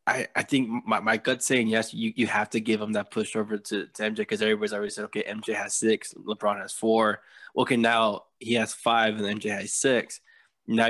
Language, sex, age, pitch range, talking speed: English, male, 20-39, 105-115 Hz, 225 wpm